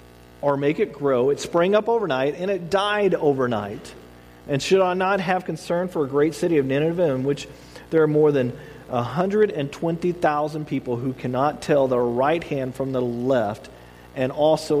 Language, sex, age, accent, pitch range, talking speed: English, male, 40-59, American, 125-195 Hz, 175 wpm